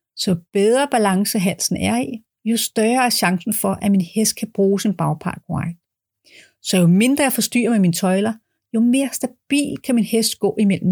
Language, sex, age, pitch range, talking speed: Danish, female, 30-49, 185-235 Hz, 185 wpm